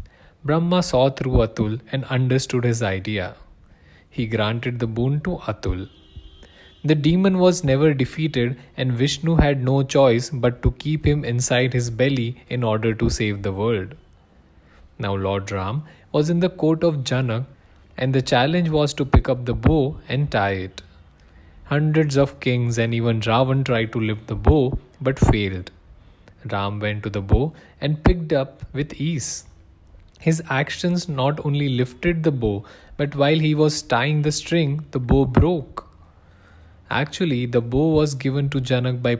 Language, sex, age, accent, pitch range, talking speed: English, male, 20-39, Indian, 105-140 Hz, 160 wpm